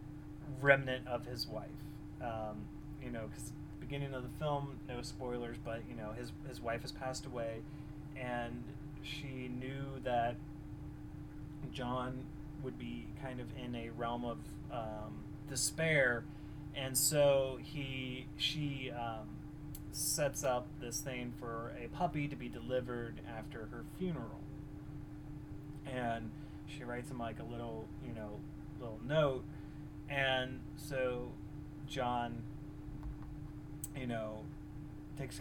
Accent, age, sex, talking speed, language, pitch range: American, 30-49, male, 125 wpm, English, 125-150 Hz